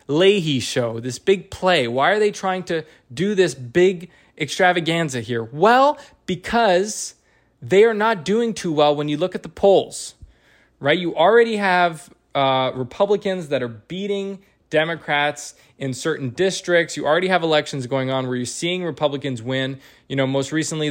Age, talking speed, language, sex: 20-39, 165 wpm, English, male